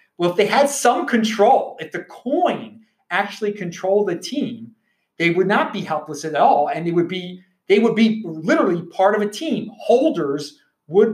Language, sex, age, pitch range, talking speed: English, male, 30-49, 175-225 Hz, 180 wpm